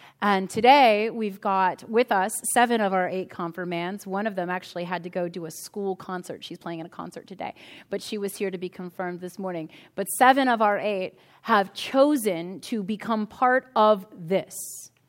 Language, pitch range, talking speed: English, 190-245 Hz, 195 wpm